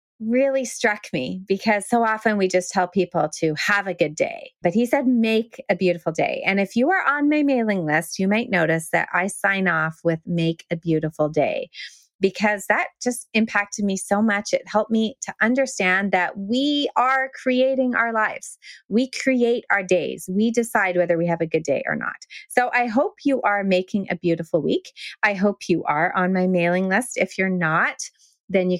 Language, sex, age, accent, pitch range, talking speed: English, female, 30-49, American, 175-235 Hz, 200 wpm